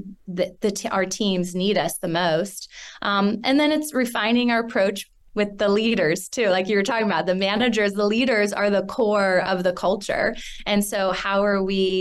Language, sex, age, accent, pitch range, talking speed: English, female, 20-39, American, 185-225 Hz, 195 wpm